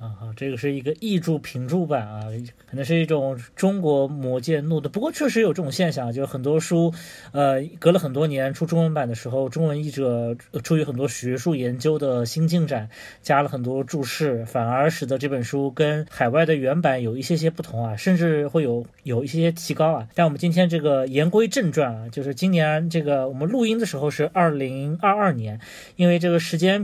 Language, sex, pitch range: Chinese, male, 135-175 Hz